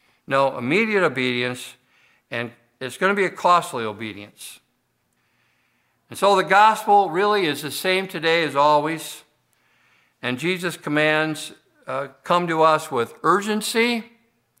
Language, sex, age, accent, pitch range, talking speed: English, male, 60-79, American, 130-170 Hz, 125 wpm